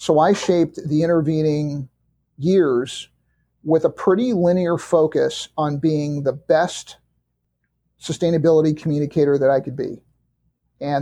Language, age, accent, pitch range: English, 50-69, American, 135-160 Hz